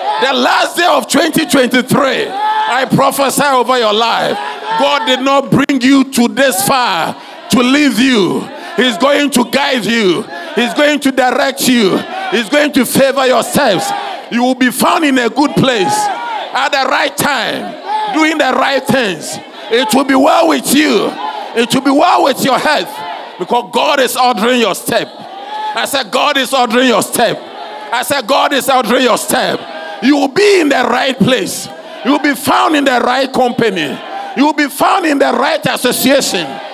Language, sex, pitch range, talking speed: English, male, 250-330 Hz, 180 wpm